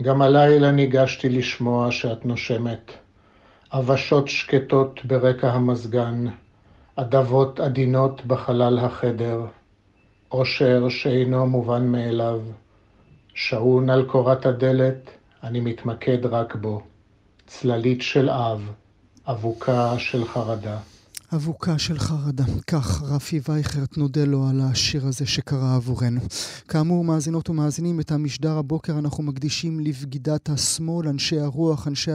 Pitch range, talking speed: 125-155 Hz, 110 wpm